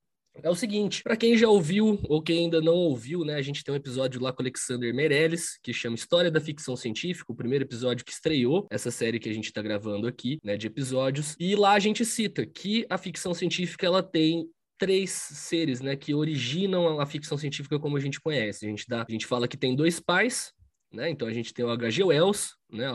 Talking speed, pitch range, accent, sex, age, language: 225 wpm, 120-170 Hz, Brazilian, male, 20-39, Portuguese